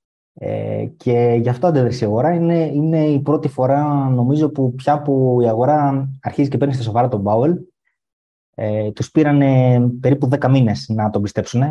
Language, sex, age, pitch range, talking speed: Greek, male, 20-39, 125-150 Hz, 170 wpm